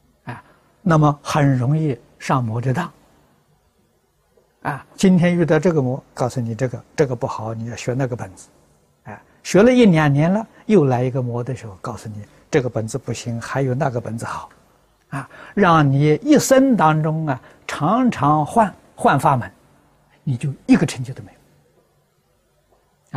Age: 60-79